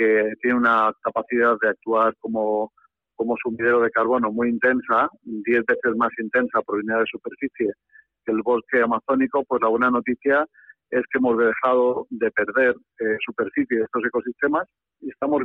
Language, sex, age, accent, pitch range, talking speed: Spanish, male, 50-69, Spanish, 115-130 Hz, 165 wpm